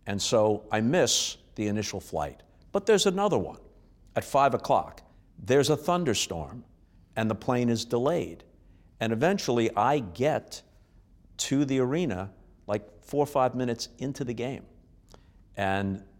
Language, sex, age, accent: English, male, 50-69, American